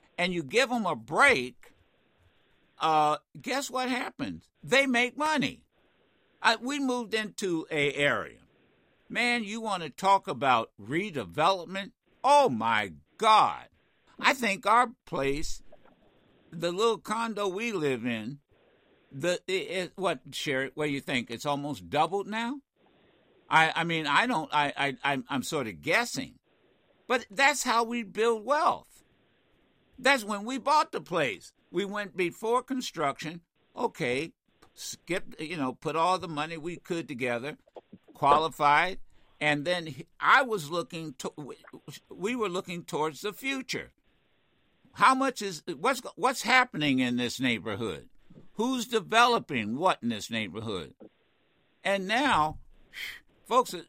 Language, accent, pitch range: English, American, 150-235 Hz